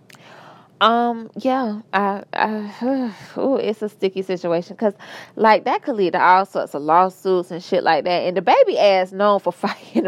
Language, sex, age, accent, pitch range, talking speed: English, female, 20-39, American, 175-220 Hz, 185 wpm